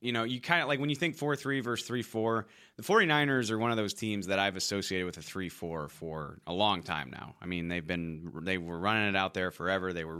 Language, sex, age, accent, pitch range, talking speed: English, male, 30-49, American, 90-105 Hz, 270 wpm